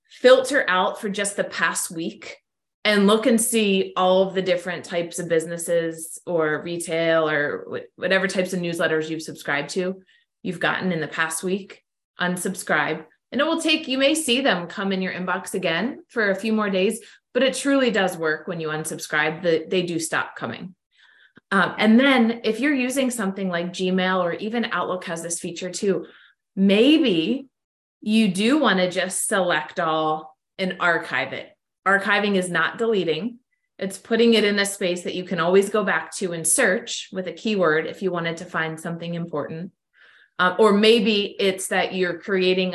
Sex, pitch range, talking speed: female, 170-215 Hz, 180 wpm